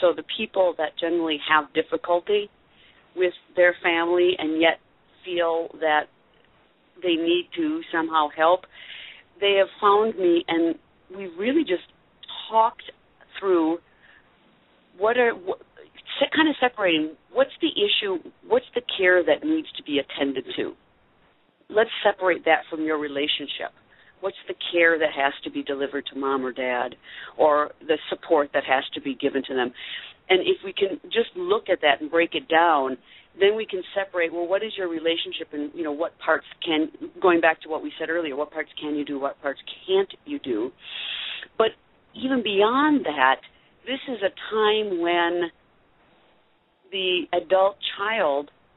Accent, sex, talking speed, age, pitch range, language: American, female, 160 wpm, 50-69, 160-260 Hz, English